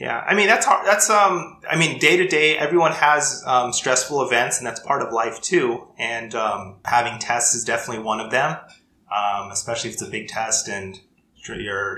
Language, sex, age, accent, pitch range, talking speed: English, male, 20-39, American, 100-115 Hz, 205 wpm